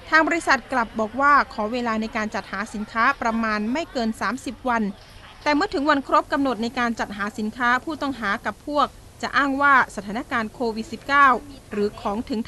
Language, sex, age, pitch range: Thai, female, 20-39, 215-275 Hz